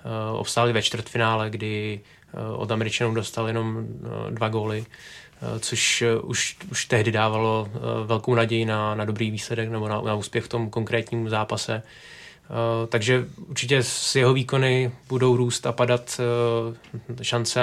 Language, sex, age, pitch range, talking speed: Czech, male, 20-39, 115-120 Hz, 135 wpm